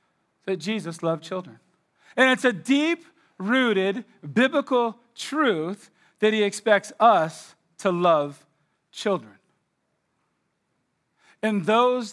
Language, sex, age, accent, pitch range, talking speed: English, male, 40-59, American, 190-240 Hz, 90 wpm